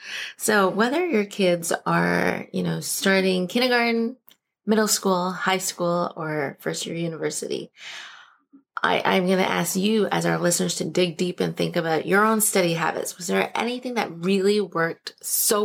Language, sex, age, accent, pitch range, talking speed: English, female, 30-49, American, 170-210 Hz, 165 wpm